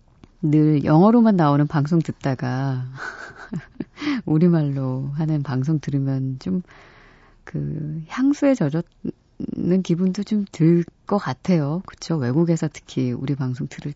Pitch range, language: 135-190 Hz, Korean